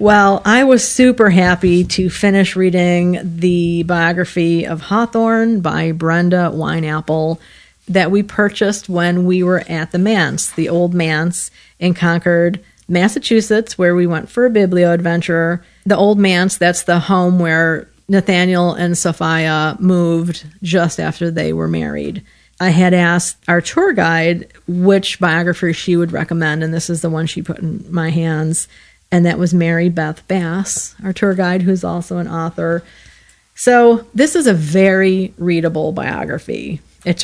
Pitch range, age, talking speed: 165-190 Hz, 40-59, 155 wpm